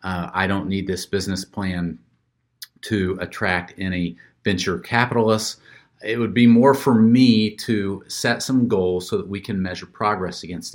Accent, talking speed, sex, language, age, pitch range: American, 160 wpm, male, English, 40-59, 95-120 Hz